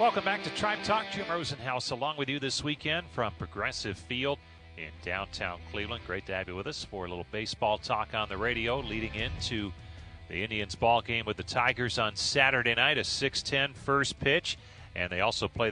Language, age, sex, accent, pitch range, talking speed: English, 40-59, male, American, 100-140 Hz, 200 wpm